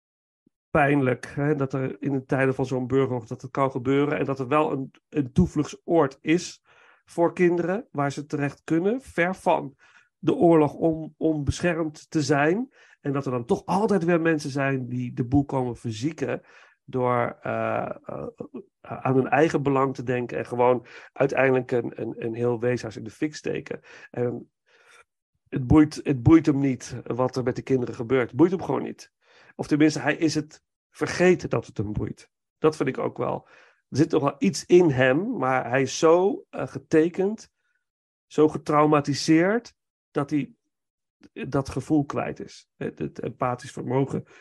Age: 40-59